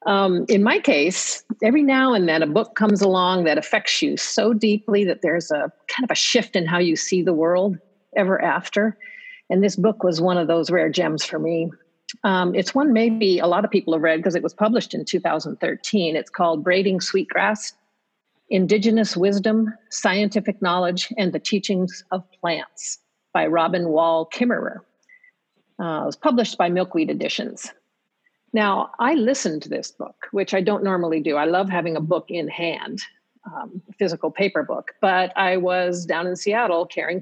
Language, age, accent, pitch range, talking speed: English, 50-69, American, 170-210 Hz, 180 wpm